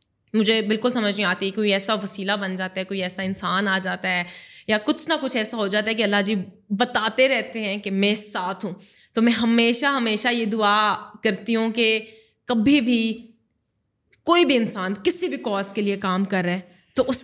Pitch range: 190-240 Hz